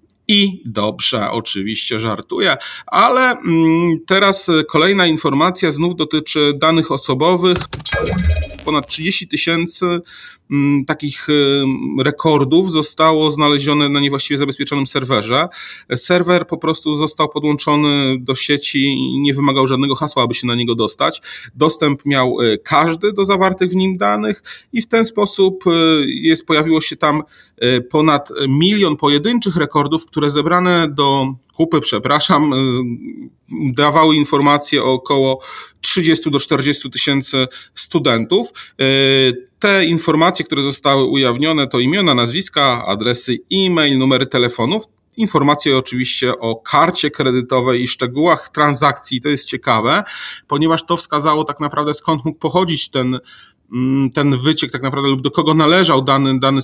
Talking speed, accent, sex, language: 125 wpm, native, male, Polish